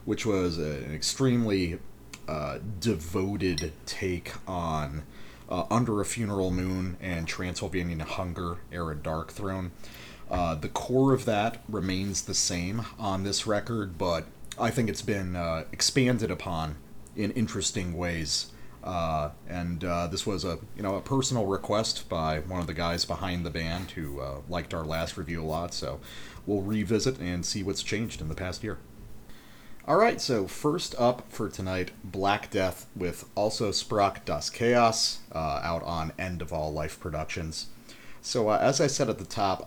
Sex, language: male, English